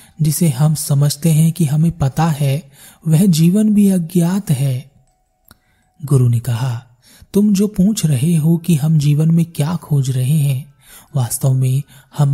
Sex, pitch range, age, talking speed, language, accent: male, 135-165 Hz, 30-49, 155 wpm, Hindi, native